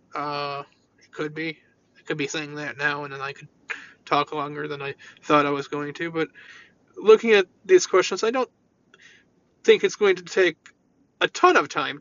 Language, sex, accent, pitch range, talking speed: English, male, American, 150-245 Hz, 195 wpm